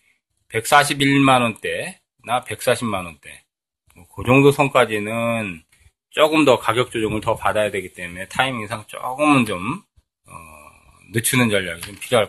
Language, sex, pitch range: Korean, male, 100-145 Hz